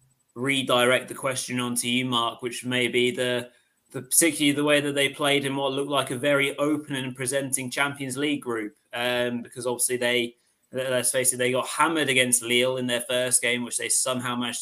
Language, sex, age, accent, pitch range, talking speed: English, male, 20-39, British, 120-130 Hz, 200 wpm